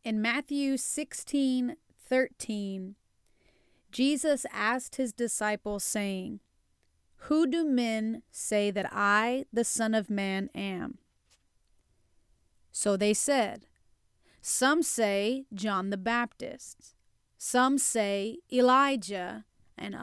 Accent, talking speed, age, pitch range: American, 95 wpm, 30-49, 210-270 Hz